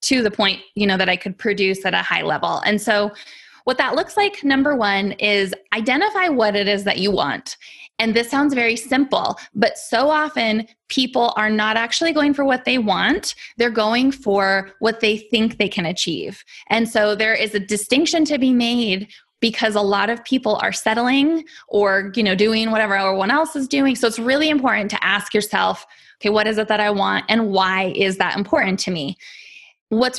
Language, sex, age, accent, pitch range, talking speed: English, female, 20-39, American, 205-260 Hz, 205 wpm